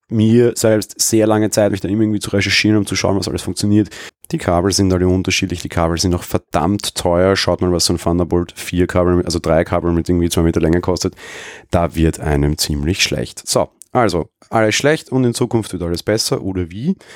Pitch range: 90-110 Hz